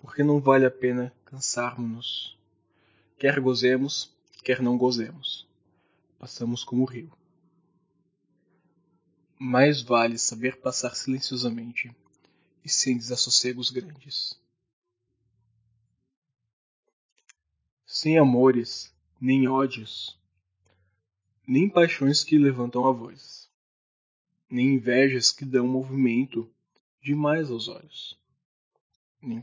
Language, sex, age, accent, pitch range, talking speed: Portuguese, male, 20-39, Brazilian, 115-135 Hz, 90 wpm